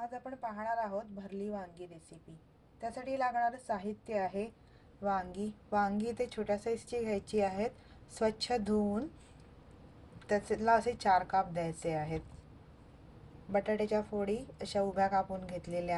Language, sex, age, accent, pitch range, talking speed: English, female, 20-39, Indian, 185-220 Hz, 120 wpm